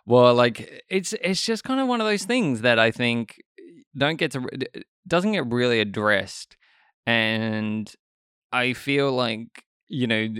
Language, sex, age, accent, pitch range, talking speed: English, male, 20-39, Australian, 110-130 Hz, 155 wpm